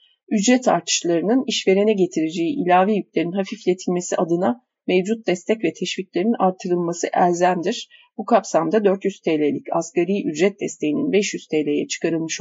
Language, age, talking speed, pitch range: Turkish, 40-59, 115 wpm, 175-225 Hz